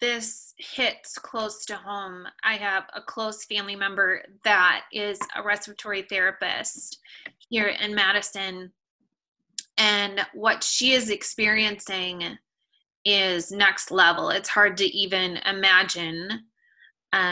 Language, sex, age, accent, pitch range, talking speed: English, female, 20-39, American, 190-220 Hz, 110 wpm